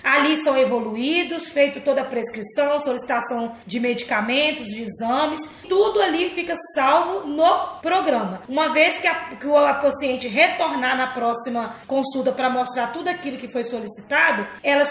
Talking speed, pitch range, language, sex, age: 140 wpm, 255-310 Hz, Portuguese, female, 20-39